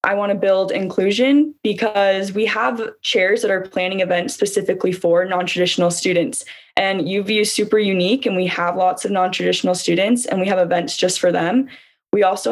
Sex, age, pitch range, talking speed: female, 10-29, 175-210 Hz, 180 wpm